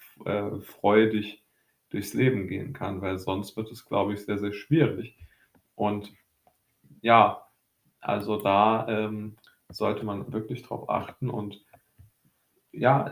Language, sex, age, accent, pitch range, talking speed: German, male, 20-39, German, 100-115 Hz, 120 wpm